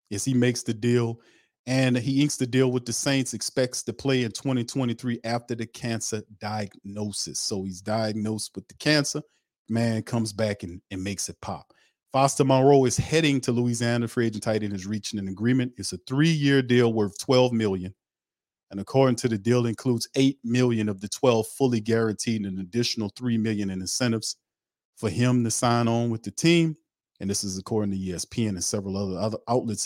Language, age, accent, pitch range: English, 40-59, American, 100-120 Hz